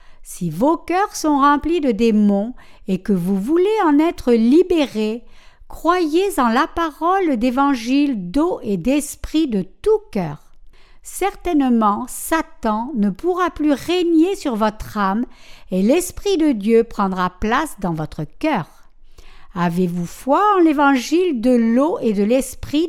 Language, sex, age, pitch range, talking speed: French, female, 60-79, 215-320 Hz, 135 wpm